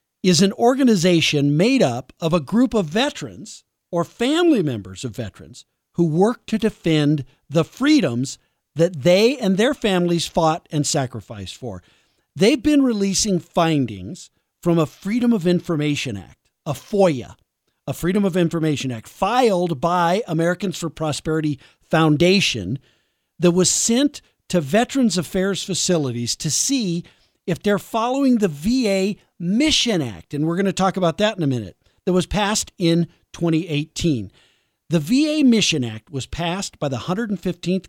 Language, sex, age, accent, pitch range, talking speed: English, male, 50-69, American, 145-200 Hz, 145 wpm